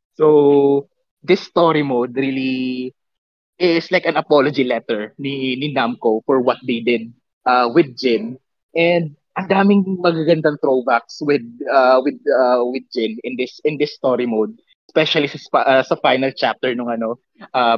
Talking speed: 160 wpm